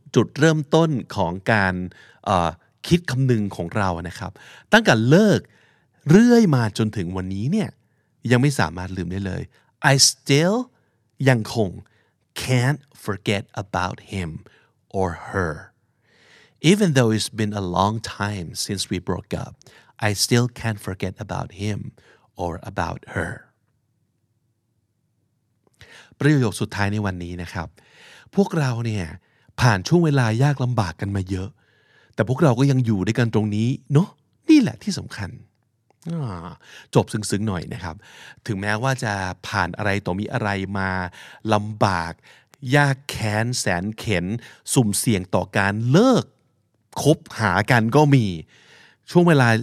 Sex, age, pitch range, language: male, 60-79, 100-135 Hz, Thai